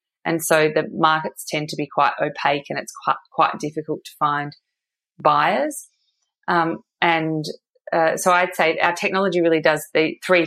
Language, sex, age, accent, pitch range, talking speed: English, female, 20-39, Australian, 150-165 Hz, 165 wpm